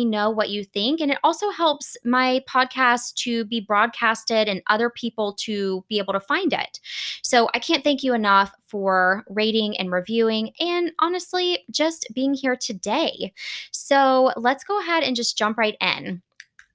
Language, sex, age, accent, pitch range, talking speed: English, female, 20-39, American, 215-295 Hz, 170 wpm